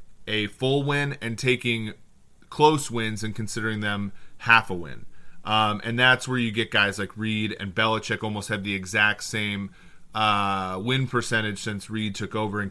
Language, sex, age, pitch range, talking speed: English, male, 30-49, 105-120 Hz, 175 wpm